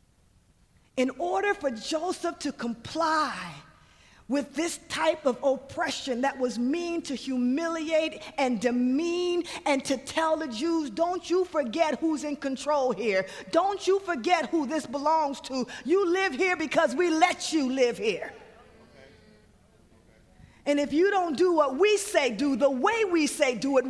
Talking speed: 155 wpm